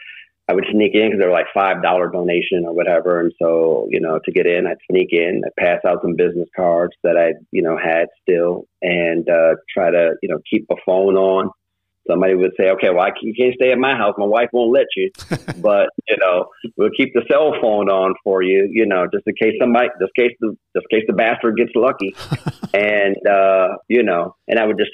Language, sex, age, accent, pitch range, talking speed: English, male, 40-59, American, 90-110 Hz, 235 wpm